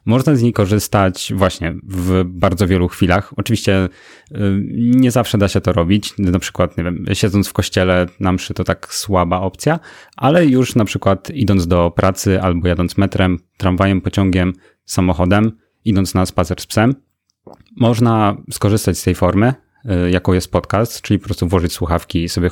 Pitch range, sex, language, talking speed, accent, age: 90-110 Hz, male, Polish, 165 wpm, native, 30-49